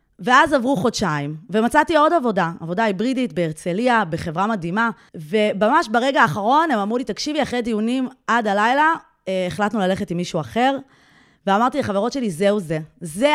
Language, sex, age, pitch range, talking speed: Hebrew, female, 20-39, 185-275 Hz, 155 wpm